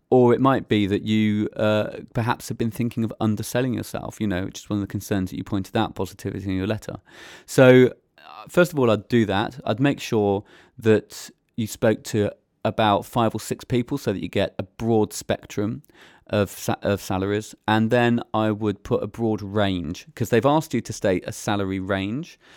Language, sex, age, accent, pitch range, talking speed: English, male, 30-49, British, 95-115 Hz, 205 wpm